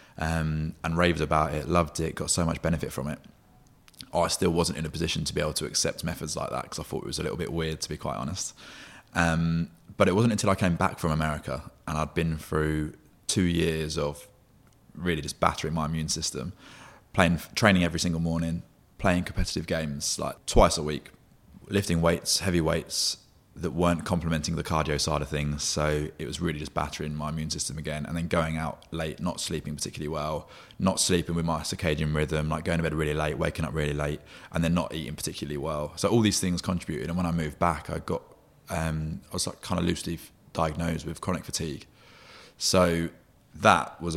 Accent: British